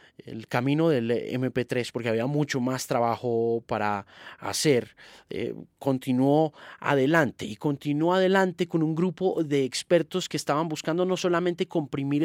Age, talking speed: 30-49, 135 wpm